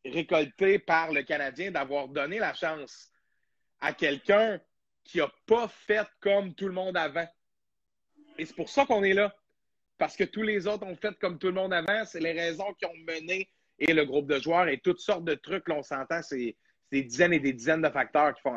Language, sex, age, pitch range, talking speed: French, male, 30-49, 140-190 Hz, 215 wpm